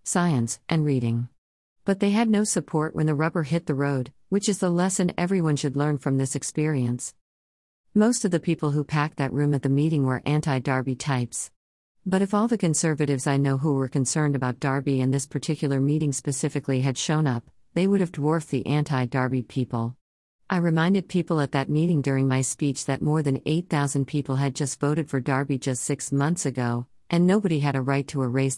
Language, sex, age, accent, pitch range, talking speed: English, female, 50-69, American, 130-160 Hz, 205 wpm